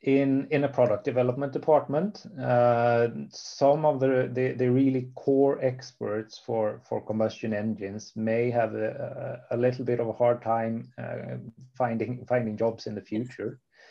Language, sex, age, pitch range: English, male, 30-49, 110-125 Hz